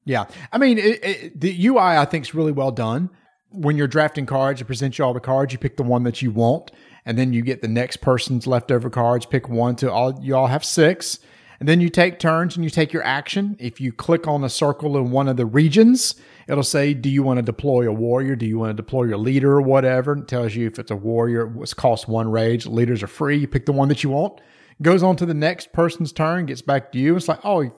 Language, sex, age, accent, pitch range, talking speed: English, male, 40-59, American, 120-155 Hz, 260 wpm